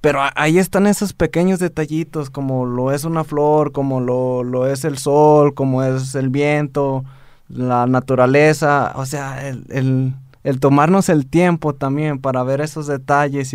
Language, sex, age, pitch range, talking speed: Spanish, male, 20-39, 130-155 Hz, 160 wpm